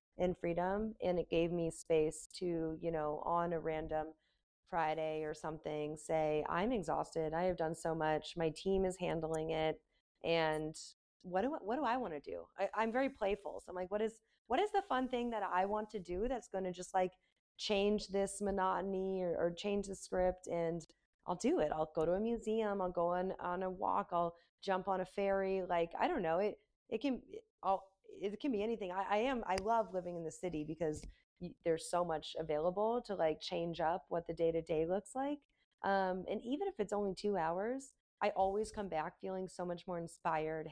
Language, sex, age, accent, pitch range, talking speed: English, female, 20-39, American, 160-200 Hz, 210 wpm